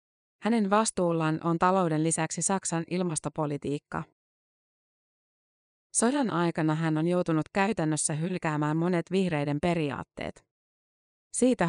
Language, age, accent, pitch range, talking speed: Finnish, 30-49, native, 155-185 Hz, 90 wpm